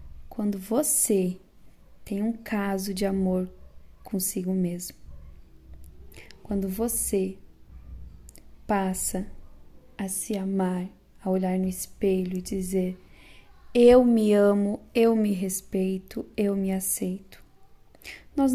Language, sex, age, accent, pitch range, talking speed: Portuguese, female, 10-29, Brazilian, 185-235 Hz, 100 wpm